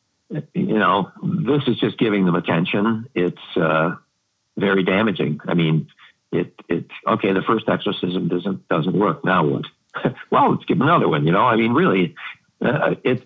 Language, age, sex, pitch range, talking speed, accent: English, 60-79, male, 85-135 Hz, 170 wpm, American